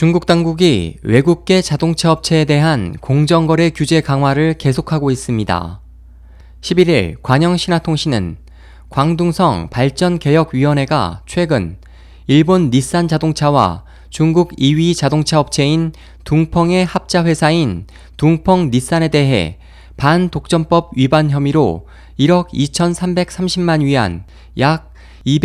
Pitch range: 125-175 Hz